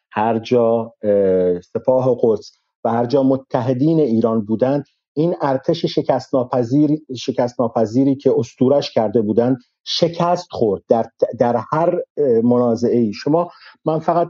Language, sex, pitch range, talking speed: Persian, male, 120-155 Hz, 105 wpm